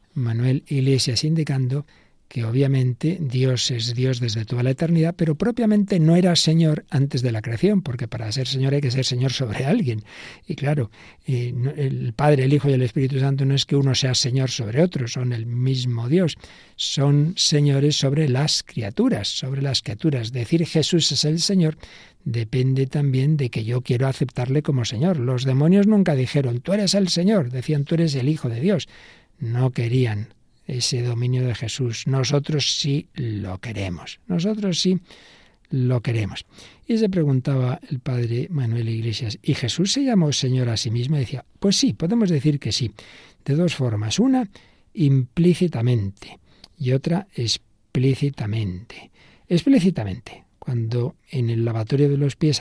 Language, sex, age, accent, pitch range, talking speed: Spanish, male, 60-79, Spanish, 120-155 Hz, 165 wpm